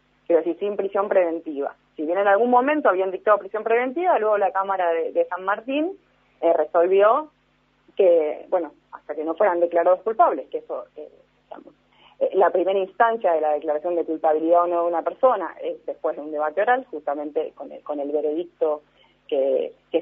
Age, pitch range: 30-49, 170-265 Hz